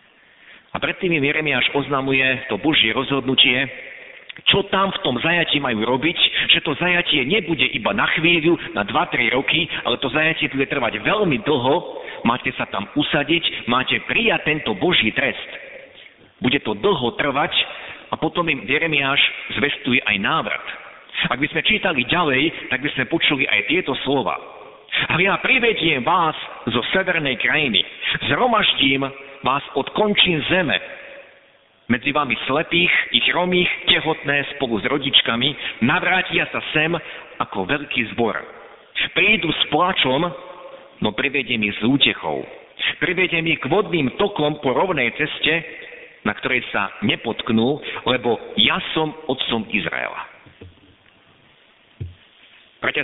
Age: 50-69